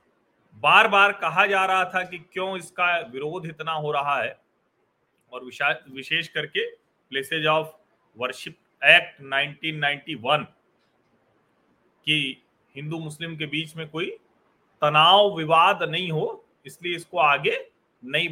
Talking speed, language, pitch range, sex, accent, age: 125 wpm, Hindi, 150-195 Hz, male, native, 40-59